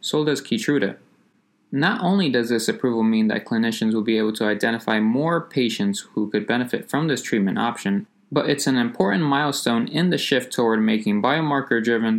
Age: 20-39